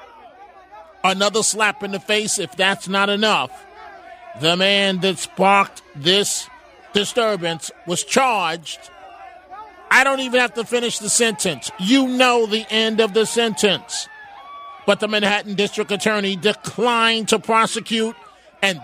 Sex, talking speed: male, 130 wpm